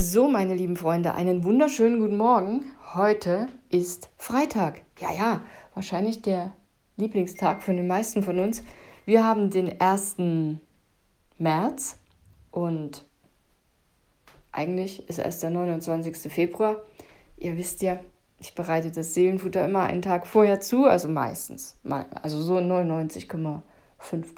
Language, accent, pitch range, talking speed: German, German, 175-215 Hz, 125 wpm